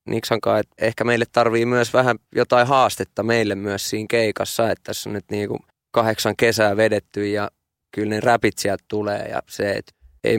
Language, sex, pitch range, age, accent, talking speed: Finnish, male, 100-115 Hz, 20-39, native, 175 wpm